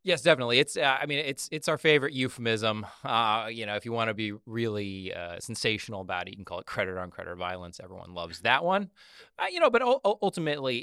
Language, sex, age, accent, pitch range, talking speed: English, male, 30-49, American, 90-115 Hz, 235 wpm